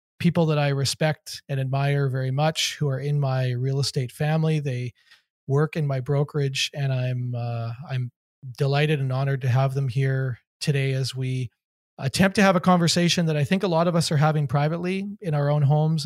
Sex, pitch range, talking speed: male, 130-150 Hz, 200 wpm